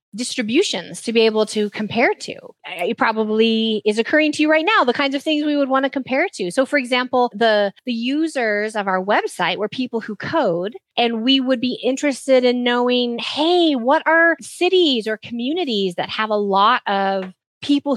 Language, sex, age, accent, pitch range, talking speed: English, female, 20-39, American, 200-265 Hz, 190 wpm